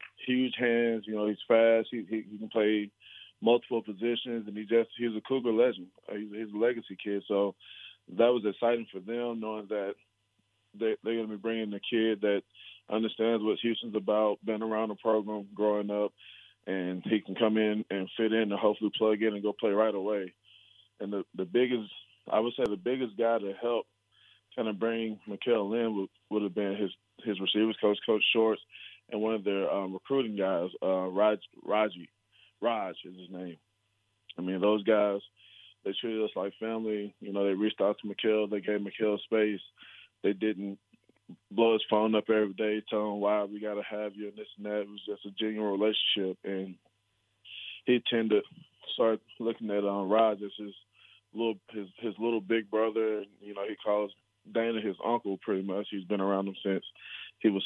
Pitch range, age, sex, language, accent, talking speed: 100-110 Hz, 20-39, male, English, American, 195 wpm